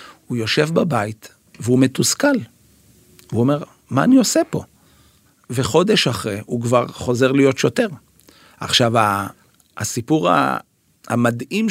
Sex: male